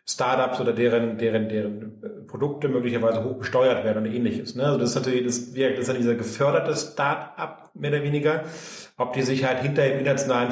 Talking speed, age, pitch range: 190 wpm, 40-59, 115-145 Hz